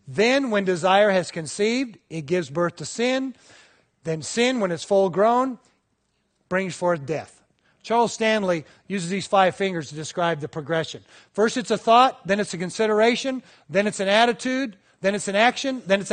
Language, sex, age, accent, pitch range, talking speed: English, male, 40-59, American, 180-240 Hz, 175 wpm